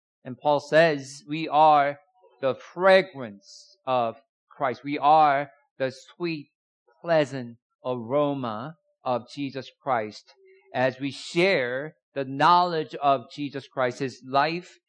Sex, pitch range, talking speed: male, 130-170 Hz, 115 wpm